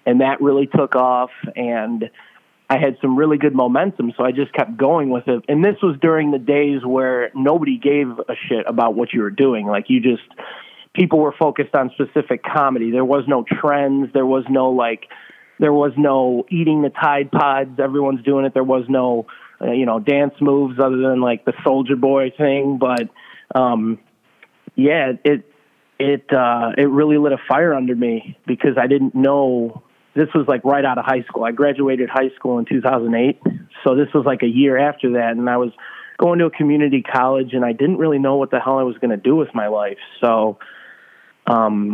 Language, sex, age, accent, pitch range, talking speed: English, male, 30-49, American, 120-140 Hz, 205 wpm